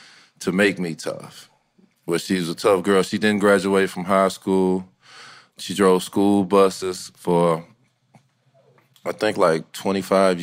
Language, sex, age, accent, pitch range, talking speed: English, male, 20-39, American, 90-100 Hz, 140 wpm